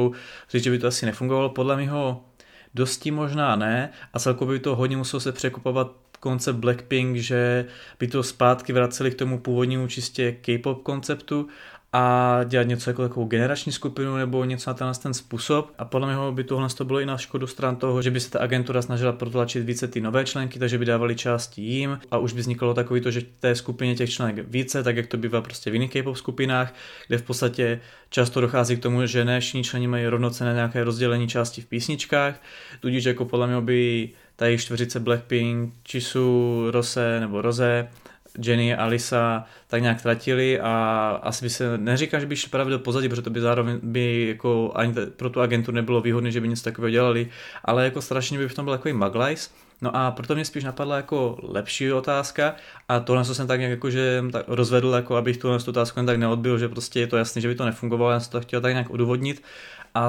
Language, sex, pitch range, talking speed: Czech, male, 120-130 Hz, 205 wpm